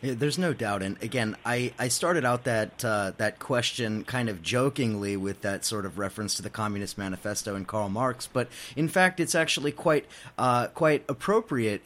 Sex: male